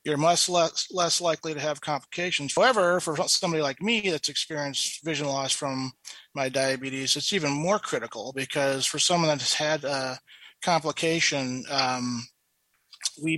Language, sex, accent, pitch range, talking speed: English, male, American, 135-160 Hz, 155 wpm